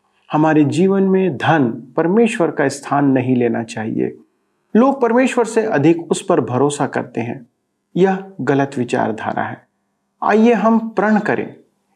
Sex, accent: male, native